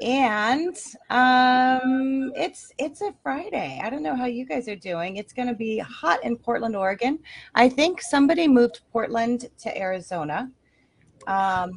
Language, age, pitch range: English, 30-49, 180-255 Hz